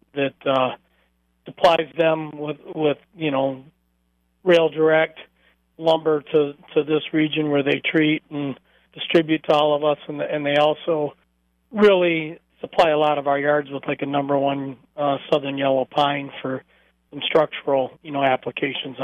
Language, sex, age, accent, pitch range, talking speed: English, male, 40-59, American, 135-160 Hz, 160 wpm